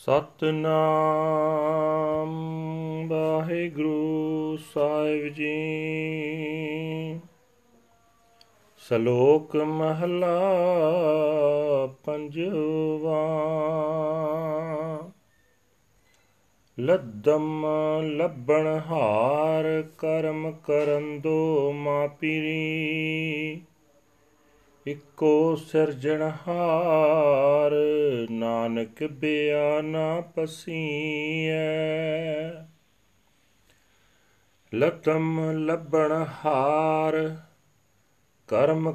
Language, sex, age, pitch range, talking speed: Punjabi, male, 40-59, 150-160 Hz, 35 wpm